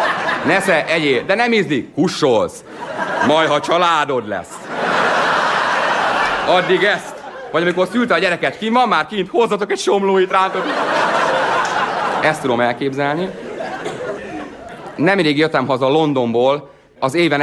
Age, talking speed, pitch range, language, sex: 30-49, 115 wpm, 120-165 Hz, Hungarian, male